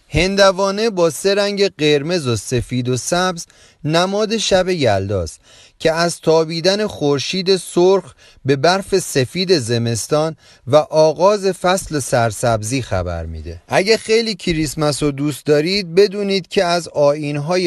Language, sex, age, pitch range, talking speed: Persian, male, 30-49, 130-190 Hz, 125 wpm